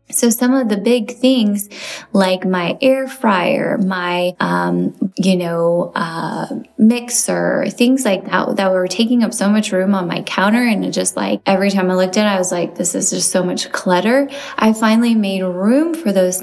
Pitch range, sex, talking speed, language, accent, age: 185-250 Hz, female, 195 wpm, English, American, 20-39